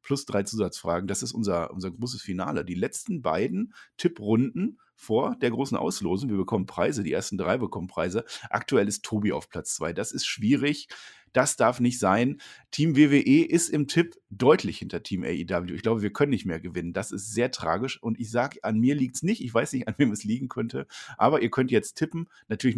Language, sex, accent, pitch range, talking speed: German, male, German, 110-140 Hz, 210 wpm